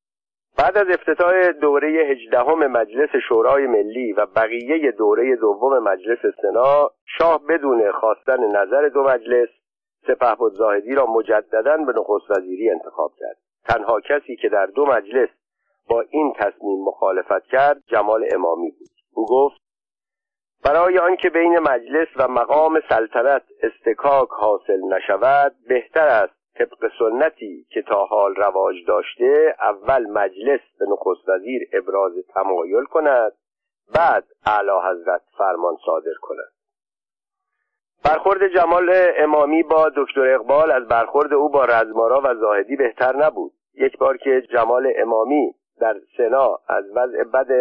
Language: Persian